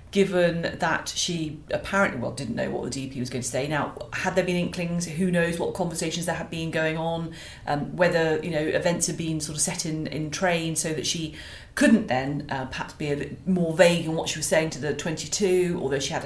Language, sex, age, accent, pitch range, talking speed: English, female, 40-59, British, 160-200 Hz, 235 wpm